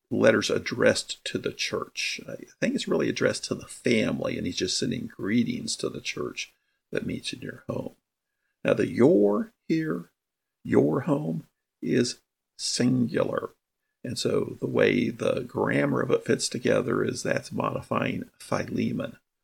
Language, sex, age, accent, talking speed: English, male, 50-69, American, 150 wpm